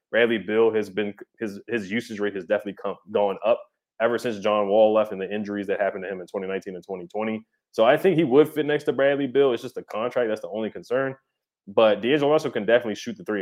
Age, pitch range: 20-39, 100-115 Hz